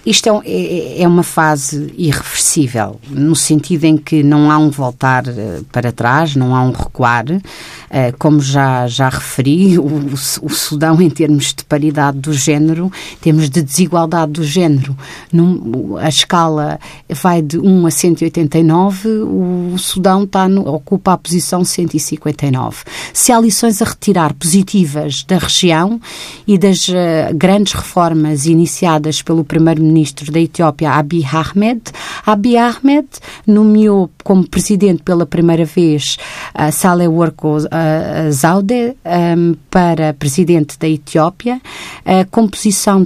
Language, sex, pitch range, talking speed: Portuguese, female, 155-185 Hz, 125 wpm